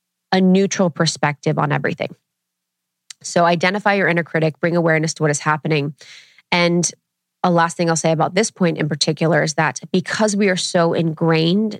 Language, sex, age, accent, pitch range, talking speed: English, female, 20-39, American, 165-205 Hz, 175 wpm